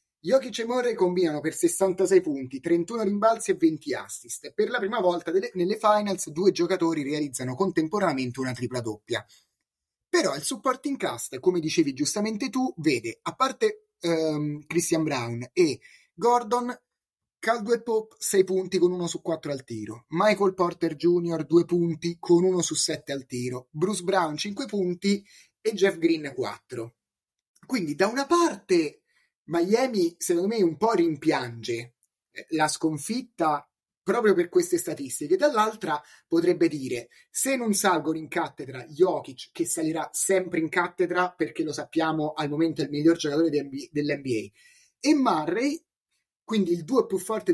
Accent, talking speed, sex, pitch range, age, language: native, 150 wpm, male, 160-250 Hz, 30-49, Italian